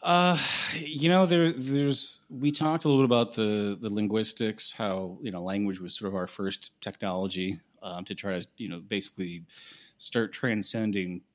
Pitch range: 90-115 Hz